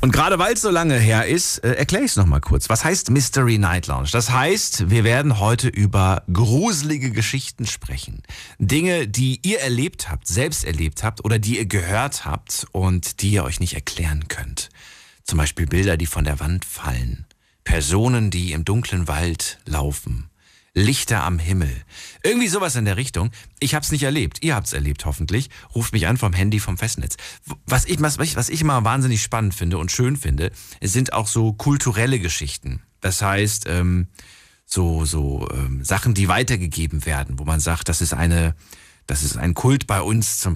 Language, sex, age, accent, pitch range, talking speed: German, male, 40-59, German, 85-120 Hz, 190 wpm